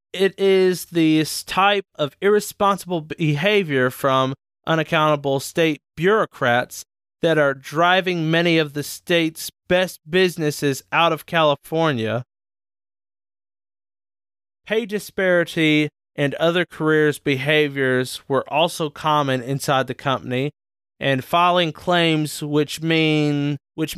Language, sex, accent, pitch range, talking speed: English, male, American, 130-160 Hz, 105 wpm